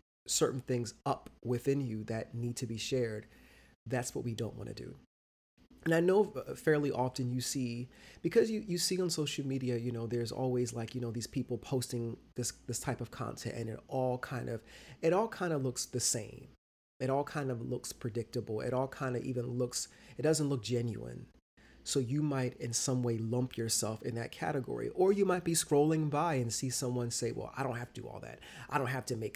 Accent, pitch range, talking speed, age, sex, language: American, 120-140 Hz, 220 wpm, 30-49, male, English